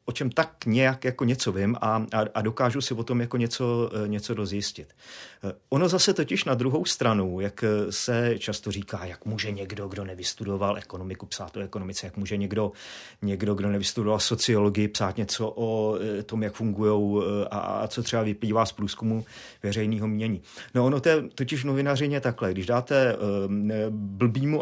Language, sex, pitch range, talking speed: Czech, male, 100-125 Hz, 165 wpm